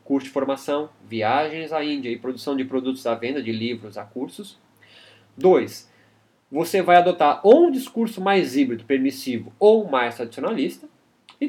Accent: Brazilian